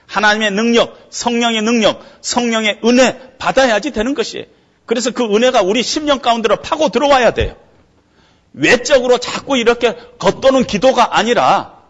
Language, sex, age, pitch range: Korean, male, 40-59, 145-245 Hz